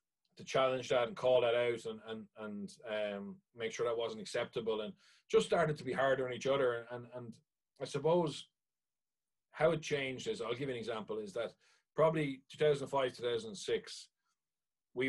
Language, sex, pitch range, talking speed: English, male, 115-155 Hz, 175 wpm